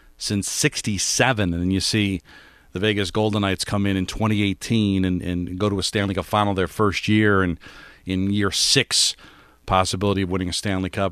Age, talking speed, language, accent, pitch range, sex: 40-59, 185 wpm, English, American, 95-120 Hz, male